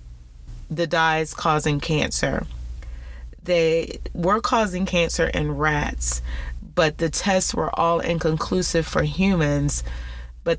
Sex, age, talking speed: female, 30-49, 110 wpm